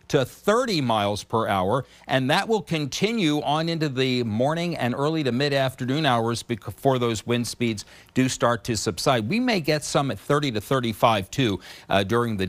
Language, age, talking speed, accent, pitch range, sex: English, 50-69, 185 wpm, American, 105-140 Hz, male